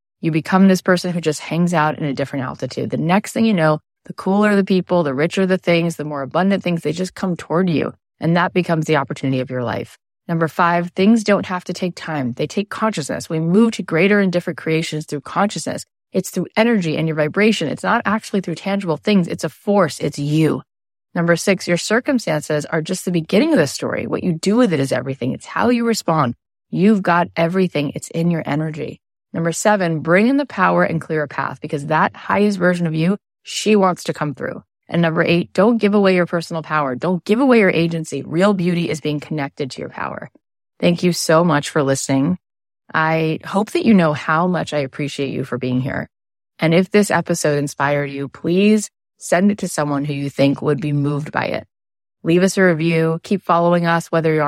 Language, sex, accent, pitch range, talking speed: English, female, American, 150-185 Hz, 220 wpm